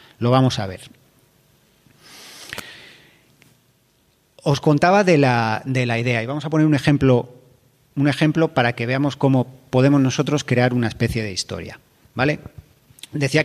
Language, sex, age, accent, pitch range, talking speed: Spanish, male, 40-59, Spanish, 120-150 Hz, 145 wpm